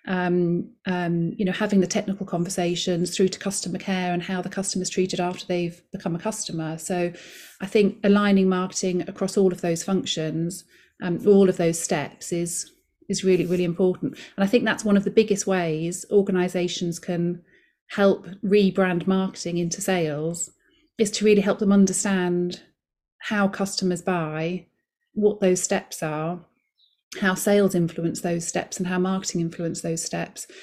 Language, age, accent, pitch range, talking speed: English, 30-49, British, 175-195 Hz, 160 wpm